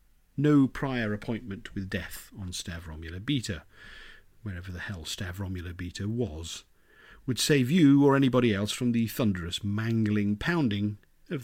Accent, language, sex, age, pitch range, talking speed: British, English, male, 50-69, 100-170 Hz, 135 wpm